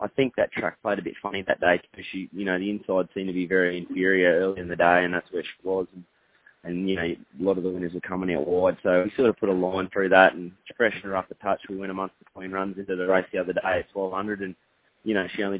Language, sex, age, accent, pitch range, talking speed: English, male, 20-39, Australian, 90-105 Hz, 295 wpm